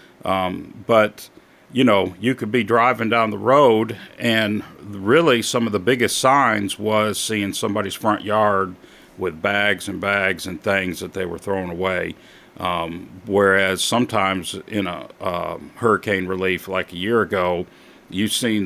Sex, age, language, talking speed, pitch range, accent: male, 40-59, English, 155 wpm, 95-110 Hz, American